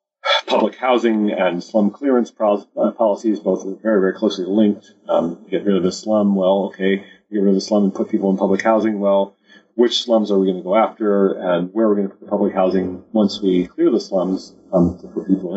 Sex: male